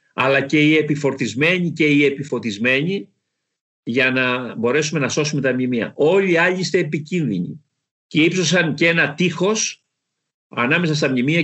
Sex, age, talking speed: male, 50-69, 130 wpm